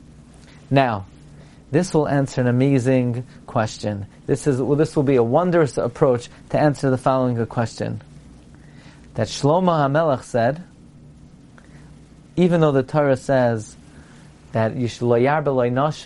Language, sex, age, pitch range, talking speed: English, male, 30-49, 130-180 Hz, 125 wpm